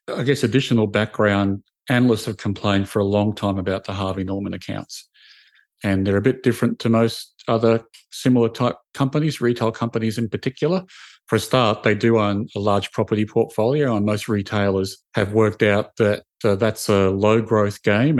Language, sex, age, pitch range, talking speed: English, male, 40-59, 100-120 Hz, 180 wpm